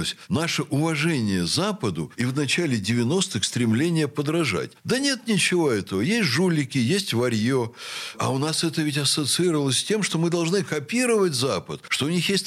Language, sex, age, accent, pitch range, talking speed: Russian, male, 60-79, native, 135-195 Hz, 165 wpm